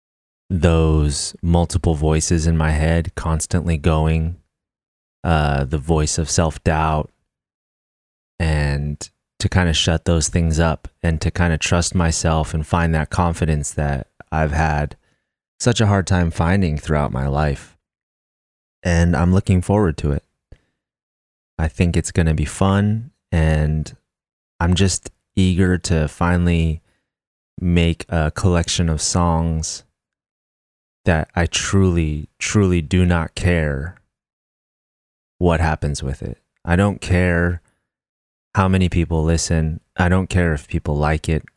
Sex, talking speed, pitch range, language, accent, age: male, 130 wpm, 75-90 Hz, English, American, 30-49